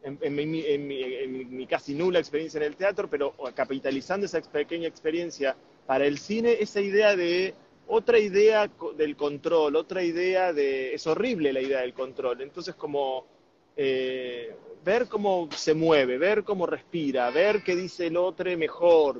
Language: Spanish